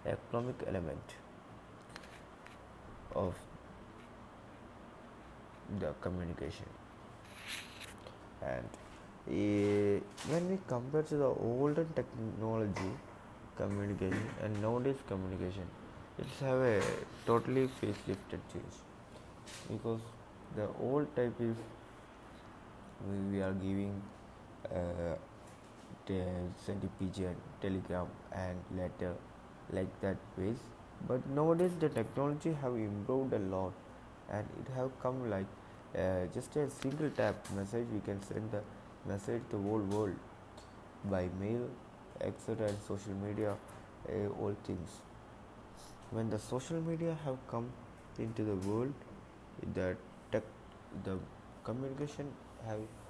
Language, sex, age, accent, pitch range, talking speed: English, male, 20-39, Indian, 100-125 Hz, 105 wpm